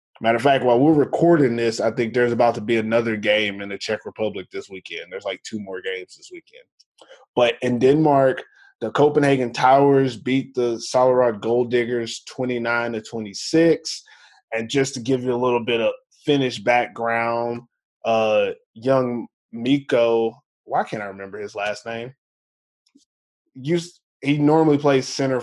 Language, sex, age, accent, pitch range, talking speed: English, male, 20-39, American, 115-140 Hz, 160 wpm